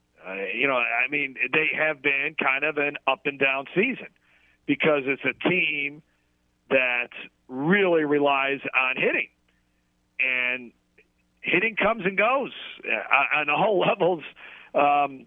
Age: 40-59